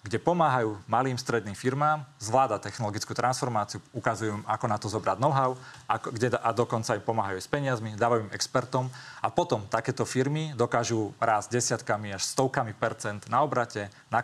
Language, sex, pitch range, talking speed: Slovak, male, 110-130 Hz, 175 wpm